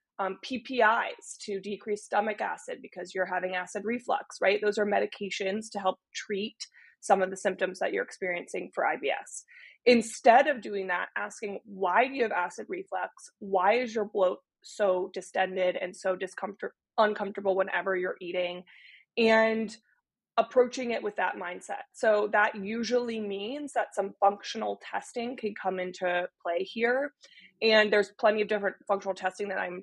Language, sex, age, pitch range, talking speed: English, female, 20-39, 190-220 Hz, 160 wpm